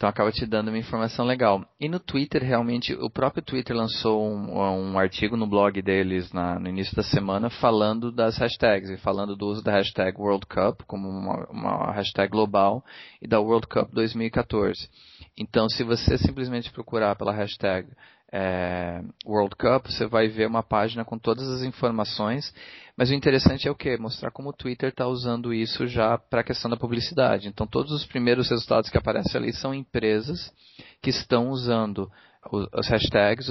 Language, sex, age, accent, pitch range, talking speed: Portuguese, male, 30-49, Brazilian, 100-120 Hz, 175 wpm